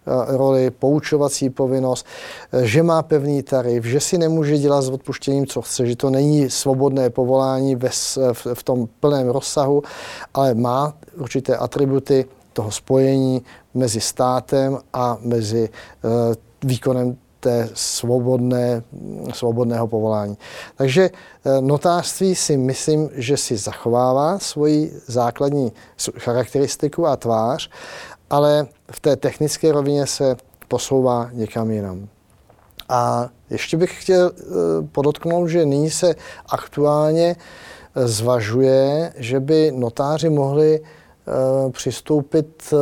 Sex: male